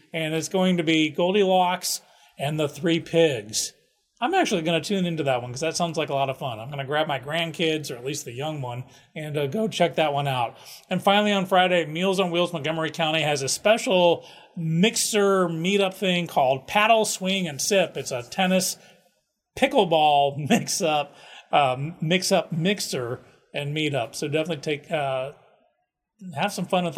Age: 40-59